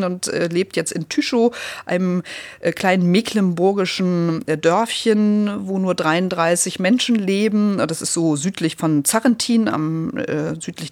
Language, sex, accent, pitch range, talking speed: German, female, German, 150-190 Hz, 115 wpm